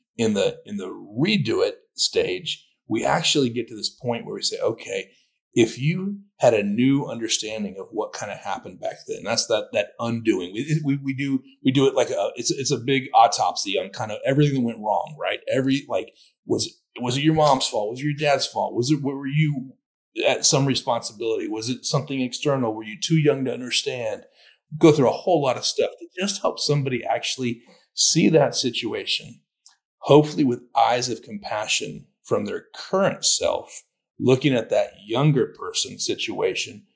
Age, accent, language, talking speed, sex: 30-49, American, English, 190 wpm, male